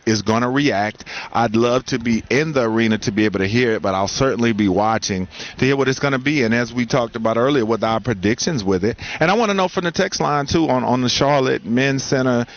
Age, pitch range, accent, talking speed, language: 40-59, 115-140 Hz, American, 265 wpm, English